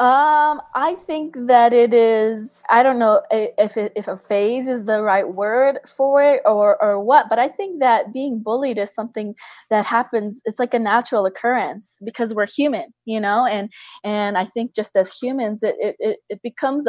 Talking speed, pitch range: 190 wpm, 205-245 Hz